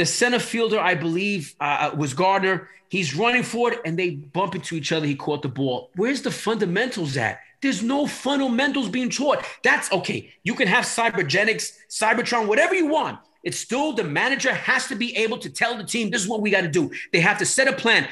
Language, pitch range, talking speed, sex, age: English, 190-280 Hz, 215 wpm, male, 30-49